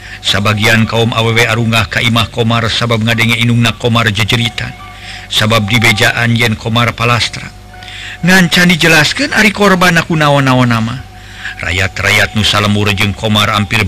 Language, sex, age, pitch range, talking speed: Indonesian, male, 50-69, 105-125 Hz, 125 wpm